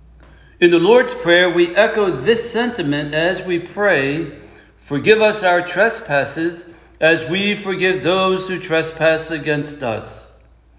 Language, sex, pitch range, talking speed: English, male, 135-185 Hz, 130 wpm